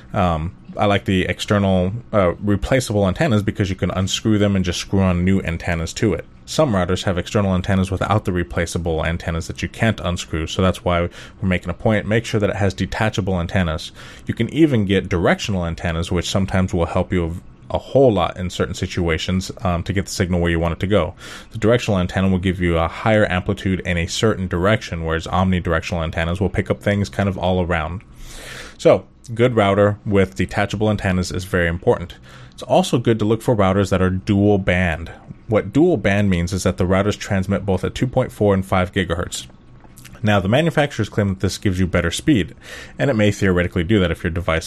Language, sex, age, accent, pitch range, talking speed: English, male, 20-39, American, 85-105 Hz, 210 wpm